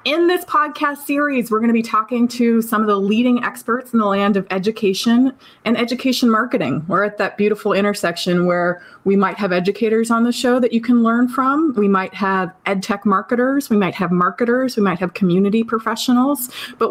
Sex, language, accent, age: female, English, American, 20-39